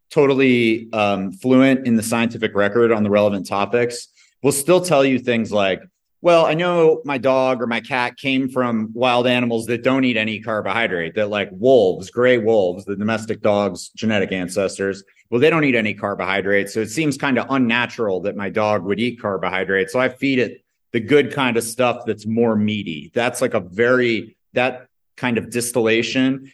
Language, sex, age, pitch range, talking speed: English, male, 30-49, 105-130 Hz, 185 wpm